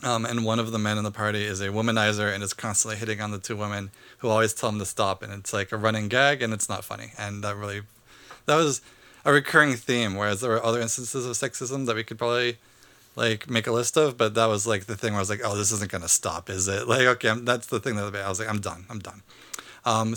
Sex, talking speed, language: male, 275 wpm, English